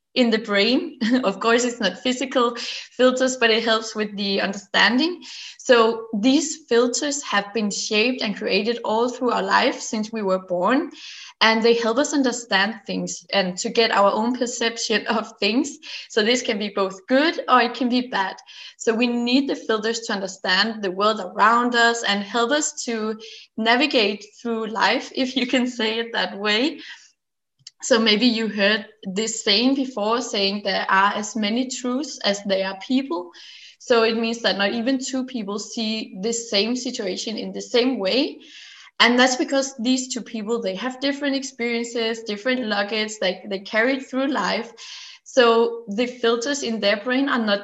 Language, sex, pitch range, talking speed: English, female, 210-255 Hz, 175 wpm